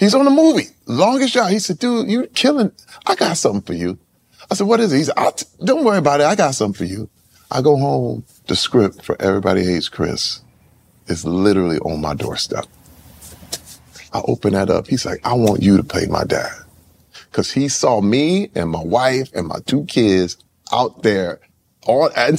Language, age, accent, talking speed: English, 30-49, American, 195 wpm